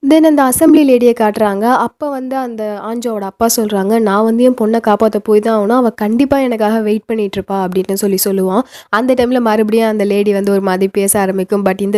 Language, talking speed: Tamil, 190 wpm